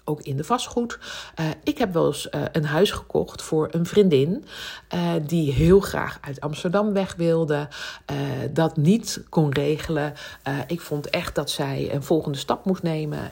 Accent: Dutch